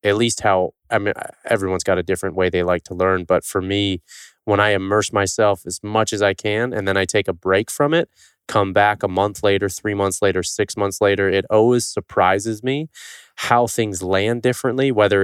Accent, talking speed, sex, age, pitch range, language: American, 215 wpm, male, 20-39, 95-120 Hz, English